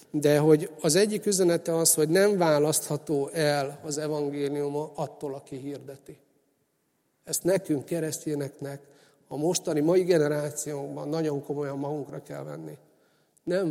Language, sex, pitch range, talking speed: Hungarian, male, 140-170 Hz, 125 wpm